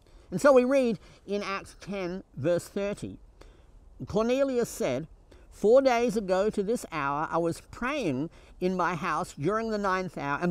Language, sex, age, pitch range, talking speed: English, male, 50-69, 160-225 Hz, 160 wpm